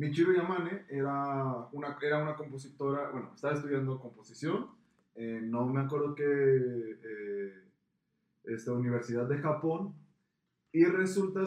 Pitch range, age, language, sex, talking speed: 115-150 Hz, 20-39, Spanish, male, 115 wpm